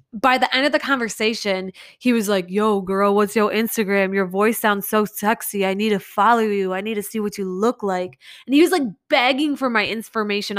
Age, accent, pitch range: 20-39, American, 195-255 Hz